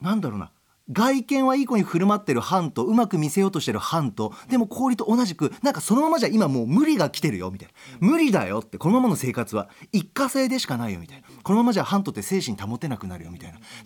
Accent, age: native, 40-59